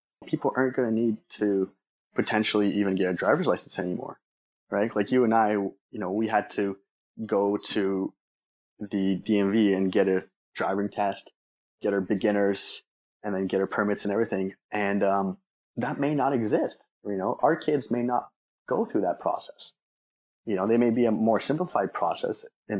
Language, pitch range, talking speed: English, 95-115 Hz, 180 wpm